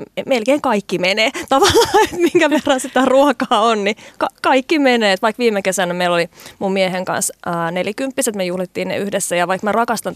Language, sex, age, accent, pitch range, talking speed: Finnish, female, 30-49, native, 185-245 Hz, 195 wpm